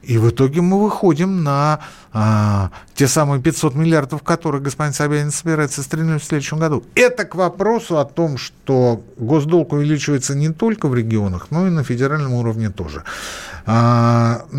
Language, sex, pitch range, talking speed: Russian, male, 100-155 Hz, 155 wpm